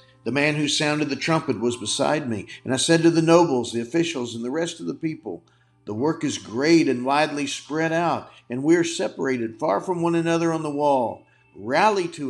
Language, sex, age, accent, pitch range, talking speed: English, male, 50-69, American, 120-165 Hz, 215 wpm